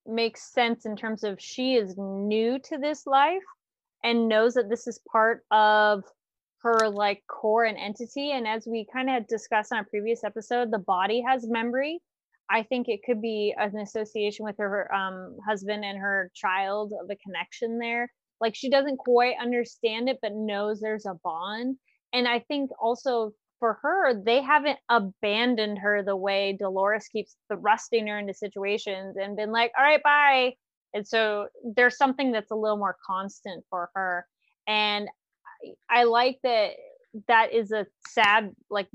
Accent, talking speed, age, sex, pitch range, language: American, 175 wpm, 20-39, female, 200-245 Hz, English